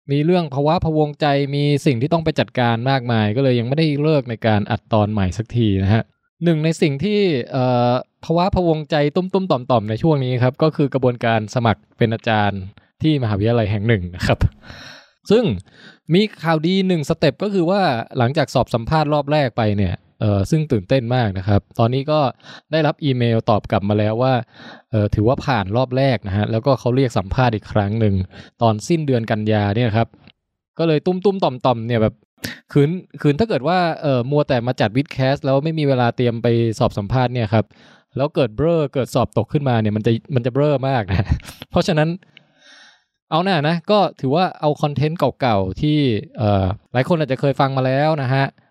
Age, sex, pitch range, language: 20-39, male, 115-155 Hz, English